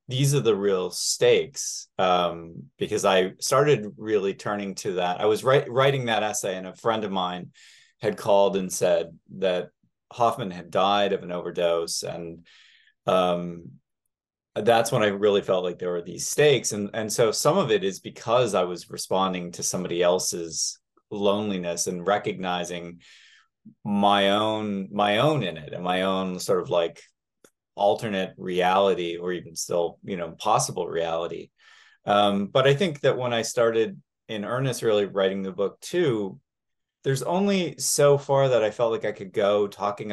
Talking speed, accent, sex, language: 165 wpm, American, male, English